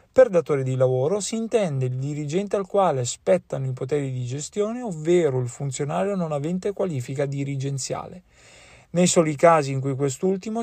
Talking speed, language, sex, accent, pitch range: 160 wpm, Italian, male, native, 135-185 Hz